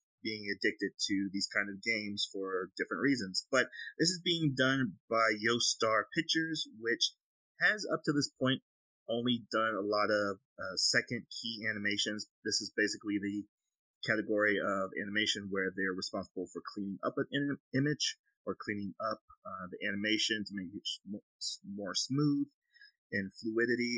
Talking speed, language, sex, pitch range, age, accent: 155 wpm, English, male, 100-135 Hz, 30-49, American